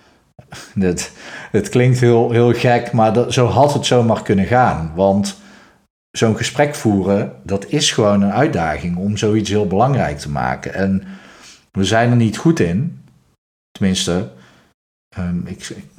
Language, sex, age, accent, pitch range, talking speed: Dutch, male, 50-69, Dutch, 95-115 Hz, 135 wpm